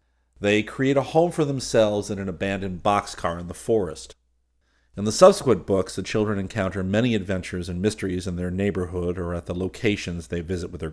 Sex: male